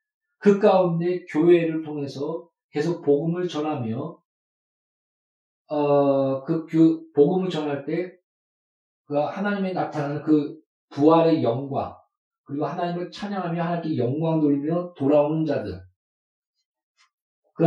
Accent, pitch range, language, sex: native, 145-180 Hz, Korean, male